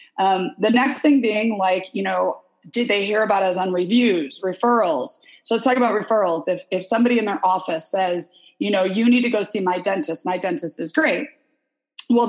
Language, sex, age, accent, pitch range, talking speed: English, female, 30-49, American, 185-240 Hz, 205 wpm